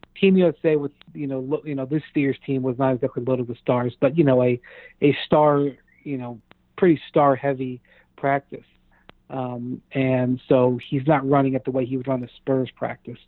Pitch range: 125-140 Hz